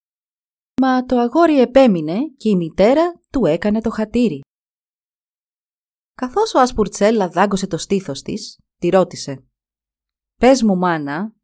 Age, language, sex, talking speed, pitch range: 30-49, Greek, female, 115 wpm, 150-240 Hz